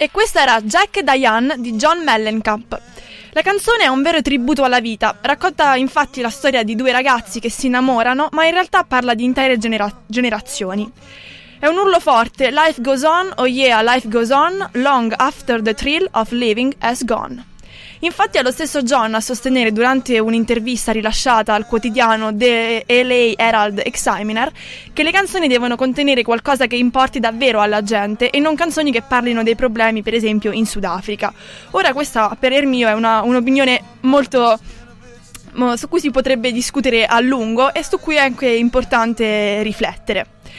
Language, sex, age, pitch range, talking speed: Italian, female, 20-39, 225-280 Hz, 165 wpm